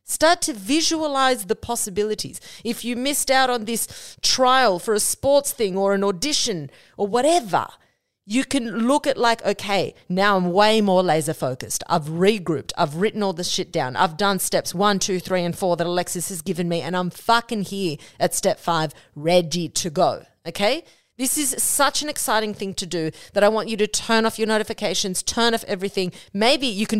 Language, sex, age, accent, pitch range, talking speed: English, female, 40-59, Australian, 180-235 Hz, 195 wpm